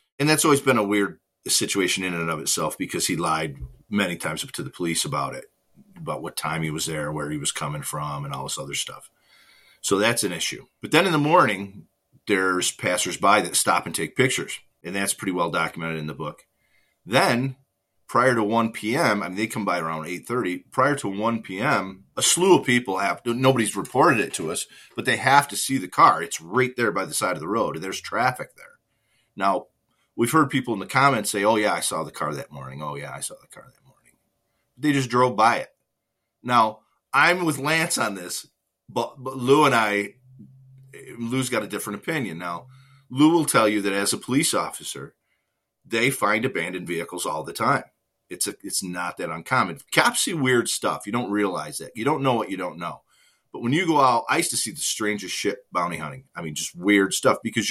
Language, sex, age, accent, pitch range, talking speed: English, male, 40-59, American, 90-130 Hz, 215 wpm